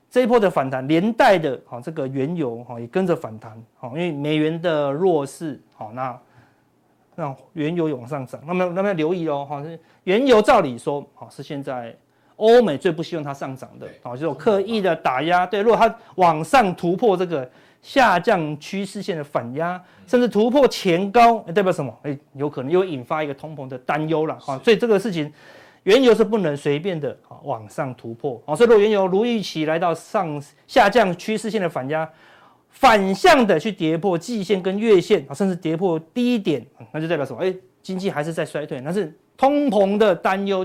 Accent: native